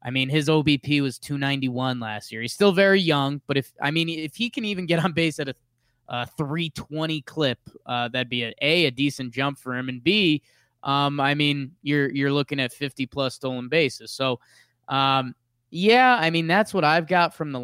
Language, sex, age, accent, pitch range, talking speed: English, male, 20-39, American, 125-165 Hz, 210 wpm